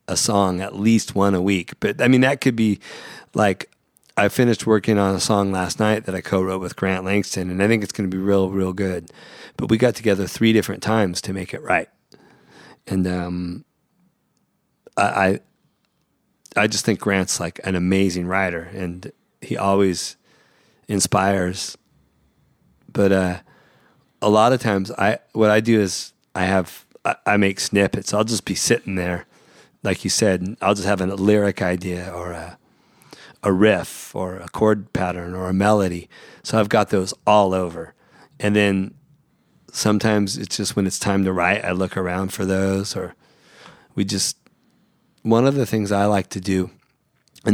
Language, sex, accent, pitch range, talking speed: English, male, American, 95-110 Hz, 175 wpm